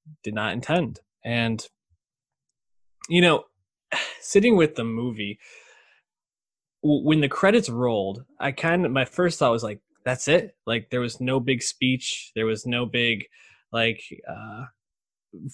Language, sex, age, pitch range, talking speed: English, male, 20-39, 110-140 Hz, 140 wpm